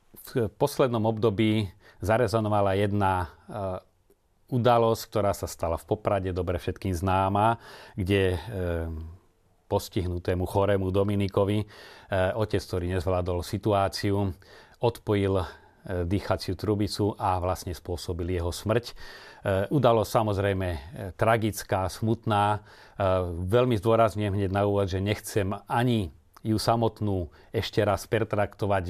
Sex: male